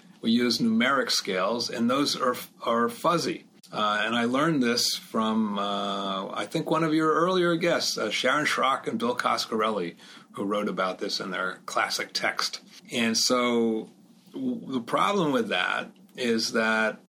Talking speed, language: 160 wpm, English